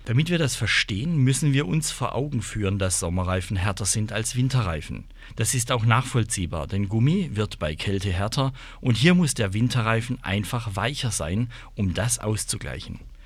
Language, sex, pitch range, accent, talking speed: German, male, 95-130 Hz, German, 165 wpm